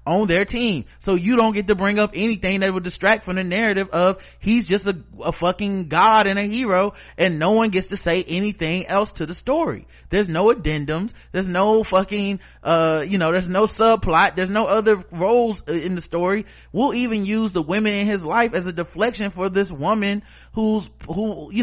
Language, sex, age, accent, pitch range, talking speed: English, male, 30-49, American, 160-210 Hz, 205 wpm